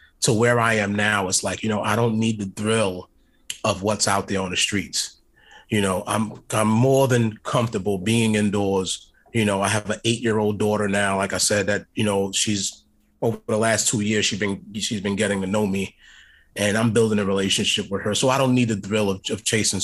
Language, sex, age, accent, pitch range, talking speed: English, male, 30-49, American, 100-115 Hz, 225 wpm